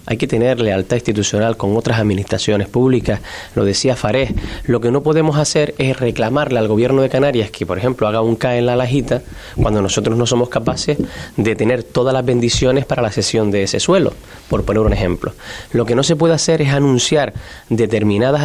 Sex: male